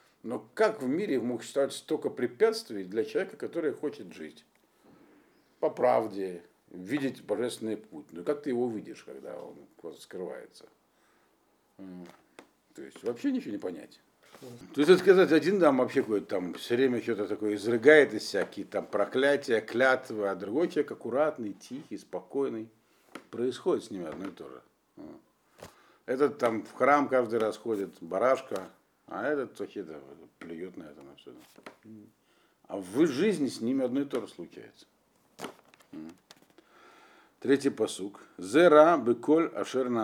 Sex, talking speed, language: male, 145 wpm, Russian